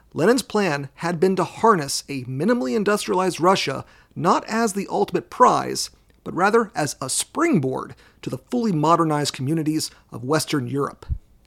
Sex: male